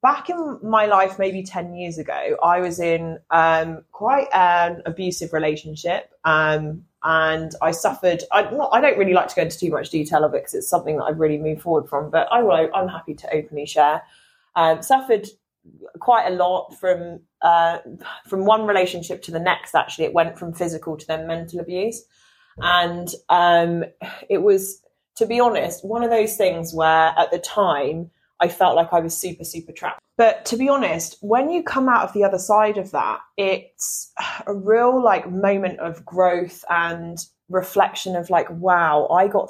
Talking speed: 185 wpm